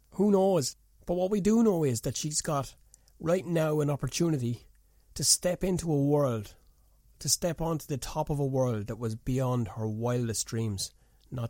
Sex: male